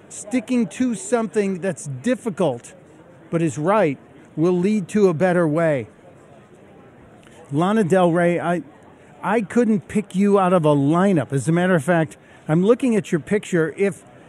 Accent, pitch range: American, 140-185 Hz